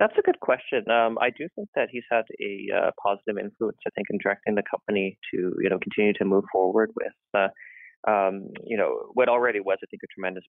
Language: English